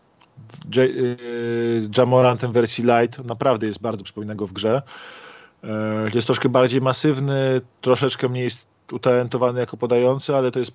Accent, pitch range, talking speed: native, 115-135 Hz, 145 wpm